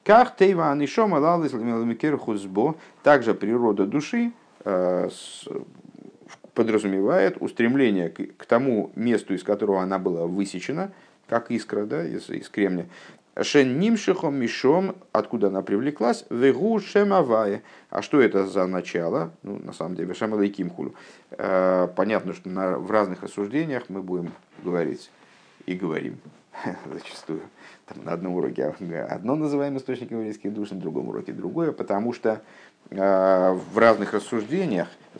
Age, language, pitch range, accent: 50-69, Russian, 95-130 Hz, native